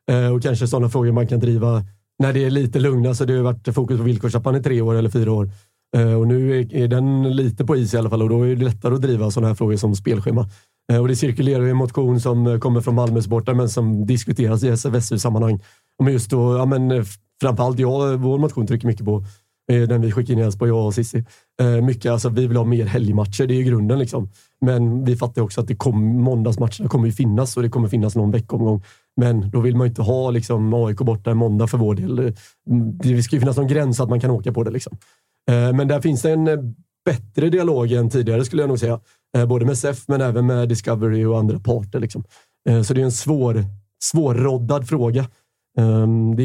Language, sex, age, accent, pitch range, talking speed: Swedish, male, 30-49, native, 115-130 Hz, 225 wpm